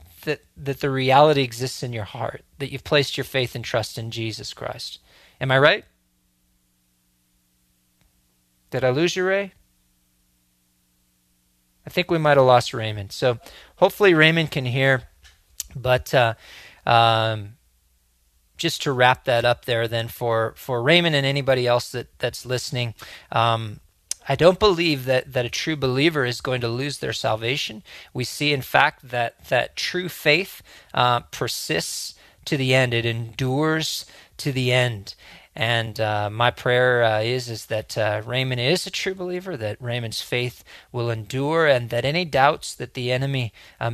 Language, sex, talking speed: English, male, 160 wpm